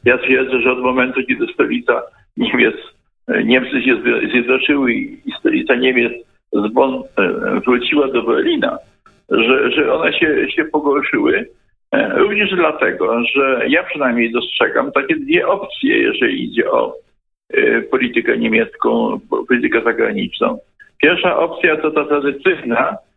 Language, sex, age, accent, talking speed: Polish, male, 50-69, native, 115 wpm